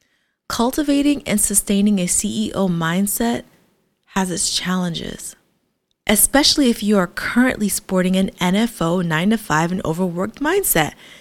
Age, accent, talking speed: 20-39, American, 125 wpm